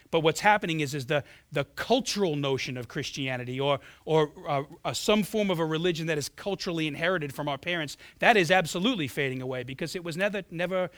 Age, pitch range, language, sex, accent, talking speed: 40-59, 135-175 Hz, English, male, American, 200 wpm